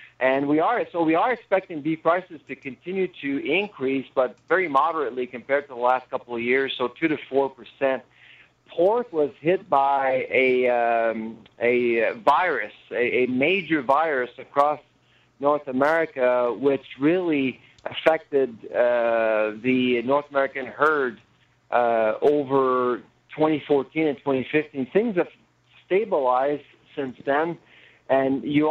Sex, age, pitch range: male, 50-69, 125-155 Hz